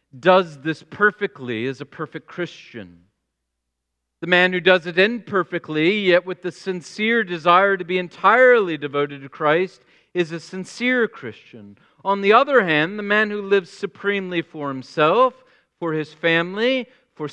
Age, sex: 40-59, male